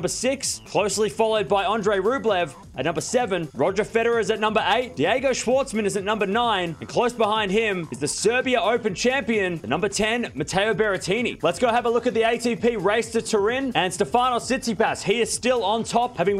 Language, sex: English, male